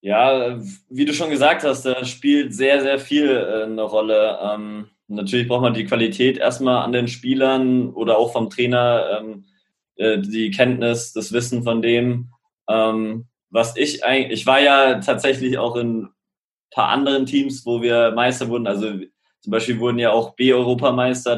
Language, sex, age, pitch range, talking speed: German, male, 20-39, 115-130 Hz, 150 wpm